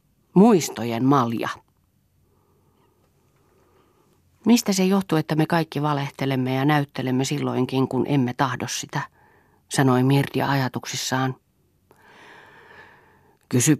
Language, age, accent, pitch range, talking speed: Finnish, 40-59, native, 120-160 Hz, 85 wpm